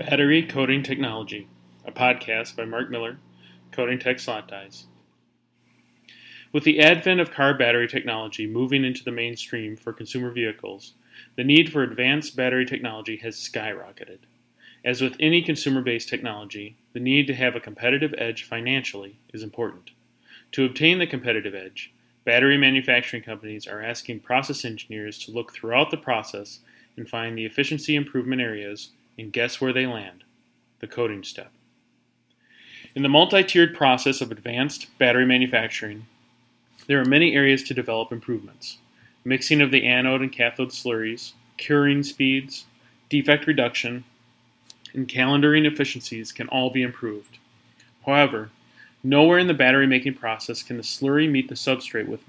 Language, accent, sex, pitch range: English, American, male, 115-135 Hz